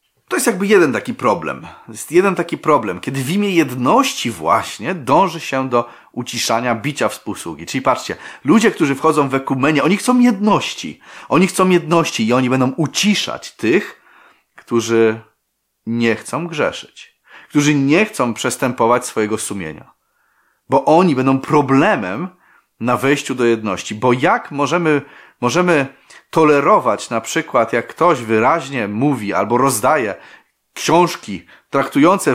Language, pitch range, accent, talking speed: Polish, 115-170 Hz, native, 135 wpm